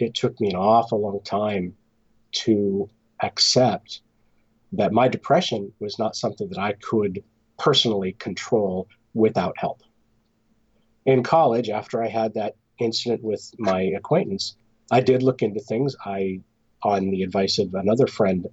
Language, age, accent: English, 40-59, American